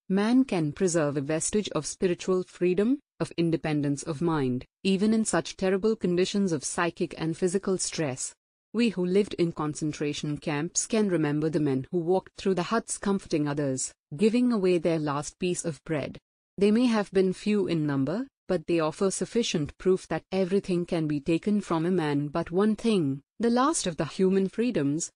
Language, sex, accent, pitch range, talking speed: English, female, Indian, 155-195 Hz, 180 wpm